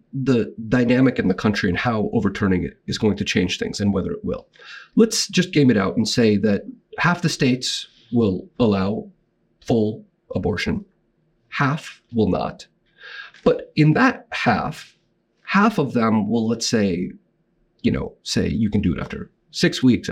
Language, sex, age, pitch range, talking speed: English, male, 40-59, 125-200 Hz, 165 wpm